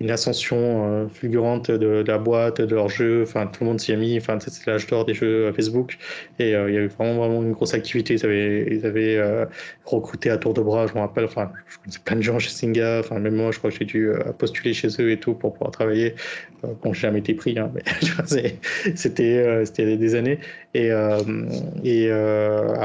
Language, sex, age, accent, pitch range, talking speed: French, male, 20-39, French, 110-120 Hz, 235 wpm